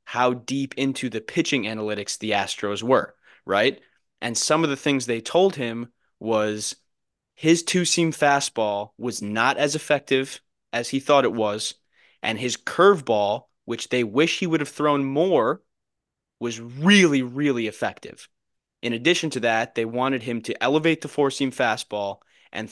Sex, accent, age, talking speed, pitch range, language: male, American, 20-39, 155 wpm, 110-145 Hz, English